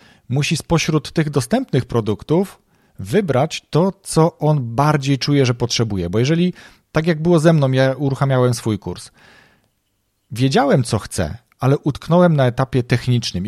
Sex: male